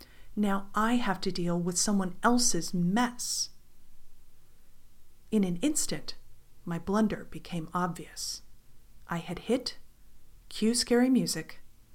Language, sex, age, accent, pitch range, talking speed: English, female, 40-59, American, 170-240 Hz, 110 wpm